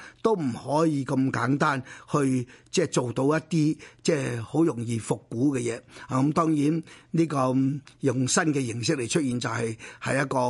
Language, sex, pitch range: Chinese, male, 135-170 Hz